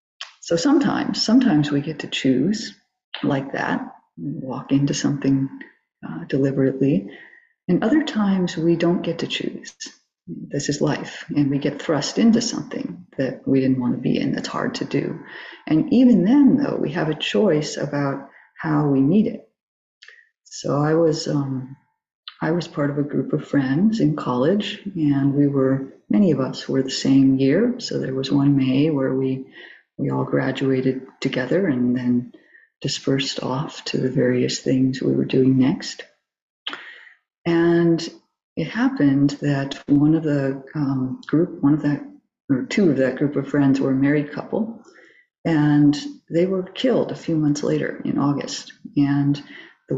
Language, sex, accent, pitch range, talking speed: English, female, American, 135-205 Hz, 165 wpm